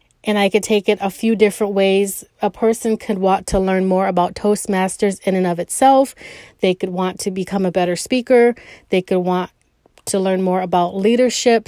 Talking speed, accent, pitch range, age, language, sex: 195 wpm, American, 195-230 Hz, 30-49, English, female